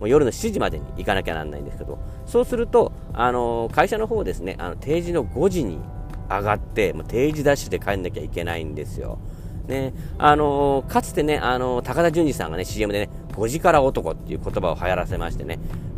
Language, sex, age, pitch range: Japanese, male, 40-59, 85-145 Hz